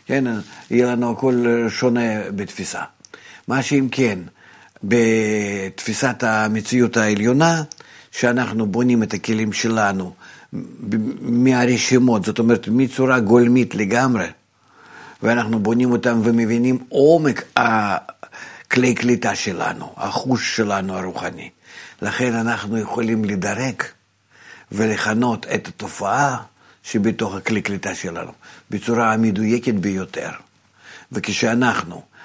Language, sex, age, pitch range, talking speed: Hebrew, male, 50-69, 110-125 Hz, 90 wpm